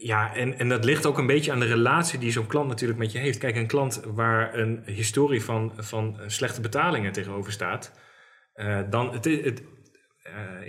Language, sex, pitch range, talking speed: Dutch, male, 110-140 Hz, 195 wpm